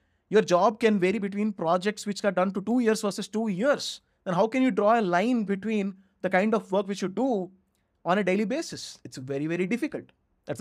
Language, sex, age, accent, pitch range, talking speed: English, male, 20-39, Indian, 170-225 Hz, 220 wpm